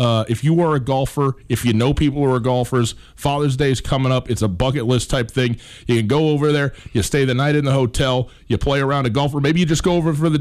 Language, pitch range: English, 100-135 Hz